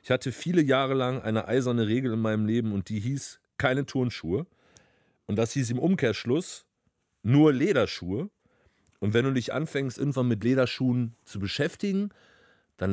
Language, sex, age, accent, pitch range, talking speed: German, male, 40-59, German, 105-135 Hz, 160 wpm